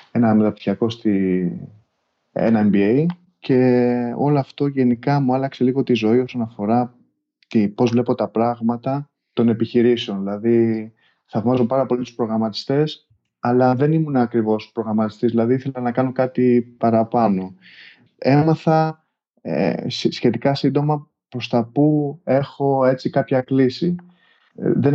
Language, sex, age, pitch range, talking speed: Greek, male, 20-39, 110-135 Hz, 125 wpm